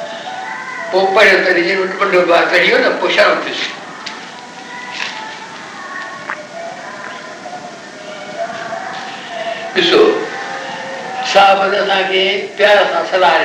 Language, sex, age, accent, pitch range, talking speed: Hindi, male, 60-79, native, 185-235 Hz, 65 wpm